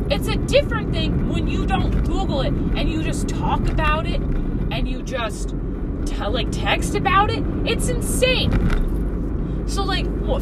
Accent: American